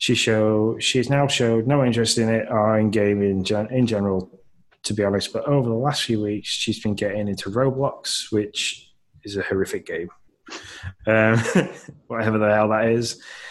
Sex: male